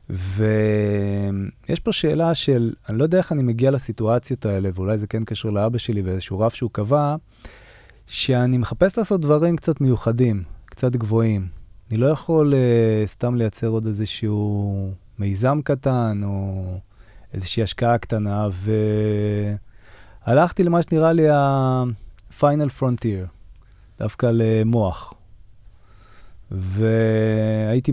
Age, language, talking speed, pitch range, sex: 20-39, Hebrew, 115 wpm, 100-130 Hz, male